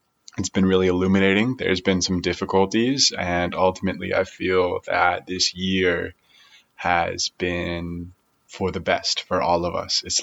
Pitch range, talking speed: 90-100 Hz, 145 wpm